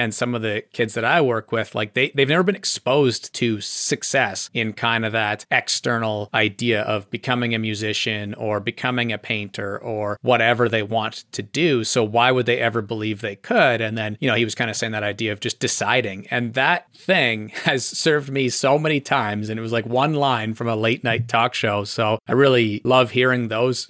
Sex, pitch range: male, 110-125 Hz